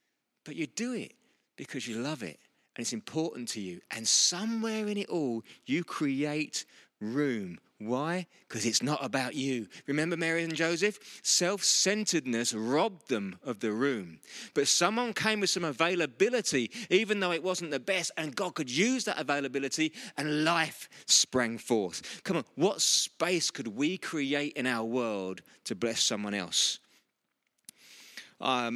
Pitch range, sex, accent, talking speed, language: 115-160 Hz, male, British, 155 wpm, English